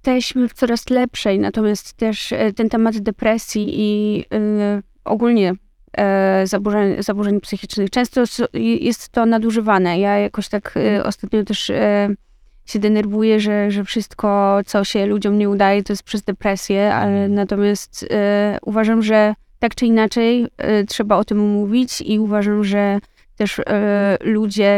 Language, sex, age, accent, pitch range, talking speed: Polish, female, 20-39, native, 195-215 Hz, 125 wpm